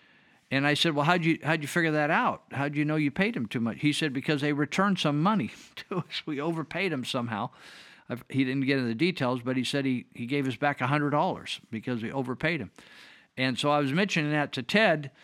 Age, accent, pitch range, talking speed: 50-69, American, 130-155 Hz, 240 wpm